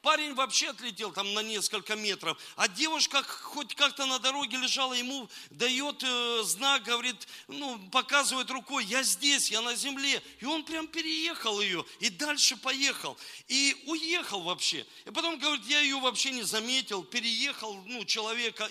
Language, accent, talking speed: Russian, native, 155 wpm